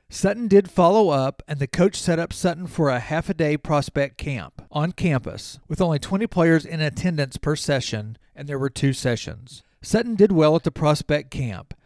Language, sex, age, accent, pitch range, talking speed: English, male, 40-59, American, 135-170 Hz, 195 wpm